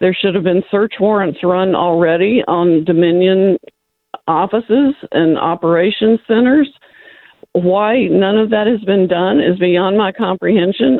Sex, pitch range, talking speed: female, 145-185 Hz, 135 wpm